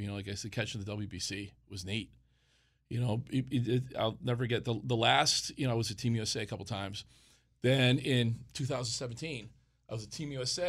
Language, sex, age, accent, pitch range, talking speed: English, male, 40-59, American, 110-130 Hz, 210 wpm